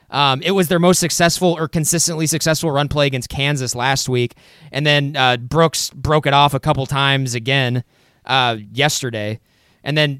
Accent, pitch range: American, 120-155 Hz